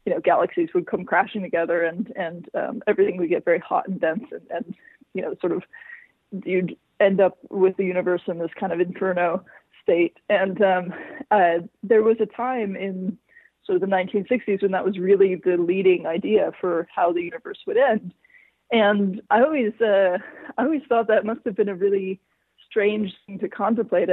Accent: American